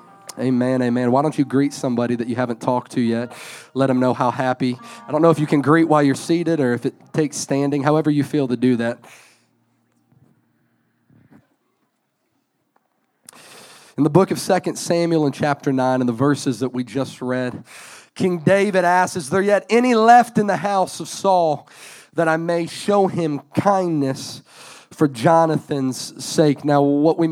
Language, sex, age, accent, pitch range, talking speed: English, male, 30-49, American, 140-185 Hz, 175 wpm